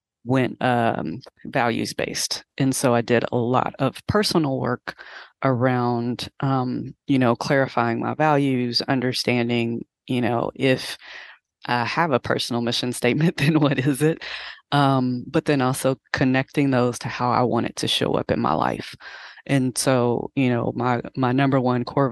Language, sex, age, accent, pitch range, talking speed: English, female, 20-39, American, 120-135 Hz, 165 wpm